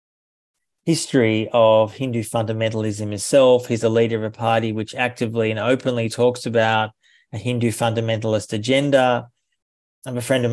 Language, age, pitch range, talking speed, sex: English, 30-49, 115-130 Hz, 140 wpm, male